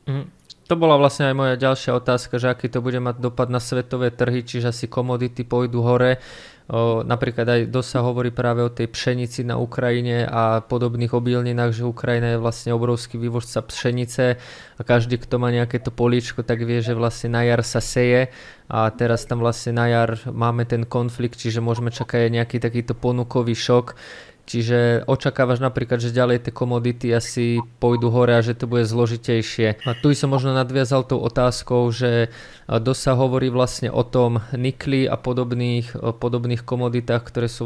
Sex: male